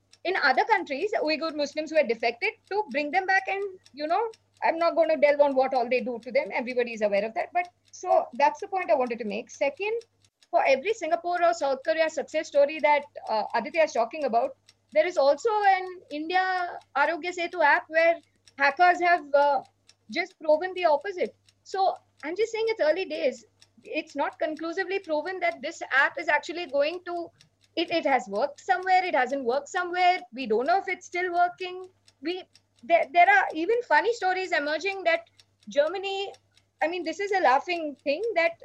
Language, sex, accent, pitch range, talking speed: English, female, Indian, 285-365 Hz, 195 wpm